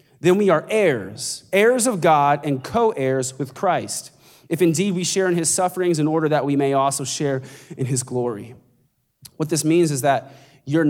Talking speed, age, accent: 185 wpm, 20-39, American